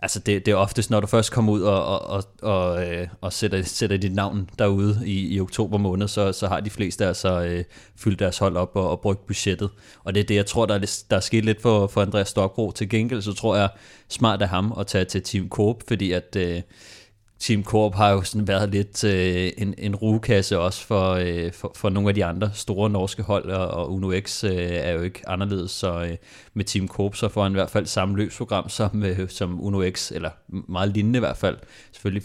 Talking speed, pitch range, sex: 235 wpm, 95-105 Hz, male